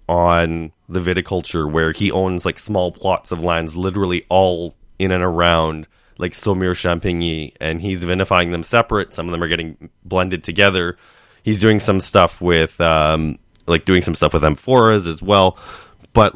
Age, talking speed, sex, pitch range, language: 20-39, 170 wpm, male, 80-100 Hz, English